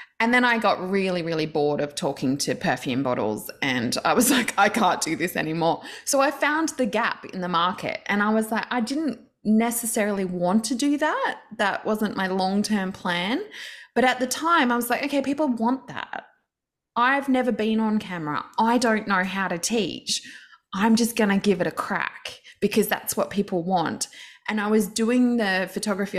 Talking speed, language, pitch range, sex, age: 195 wpm, English, 195-255 Hz, female, 20-39